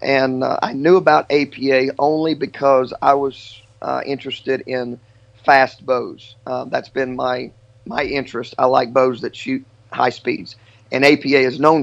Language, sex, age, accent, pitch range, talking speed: English, male, 40-59, American, 120-145 Hz, 160 wpm